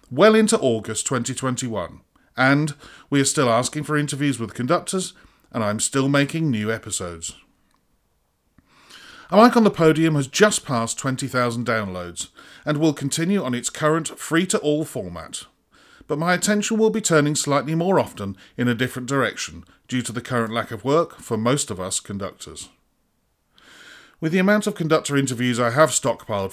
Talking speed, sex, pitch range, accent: 165 wpm, male, 110-160 Hz, British